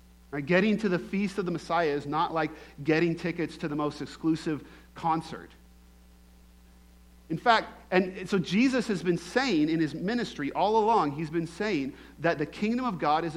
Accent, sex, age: American, male, 40-59